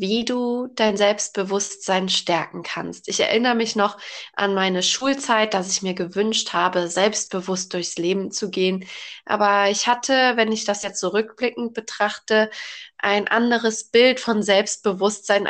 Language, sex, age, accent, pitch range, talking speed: German, female, 20-39, German, 200-235 Hz, 145 wpm